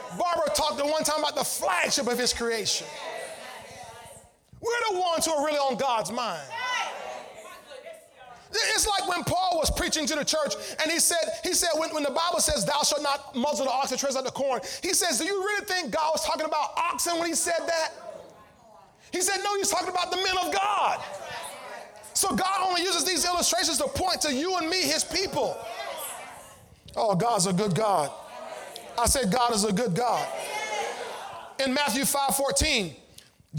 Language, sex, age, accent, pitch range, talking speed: English, male, 30-49, American, 215-340 Hz, 185 wpm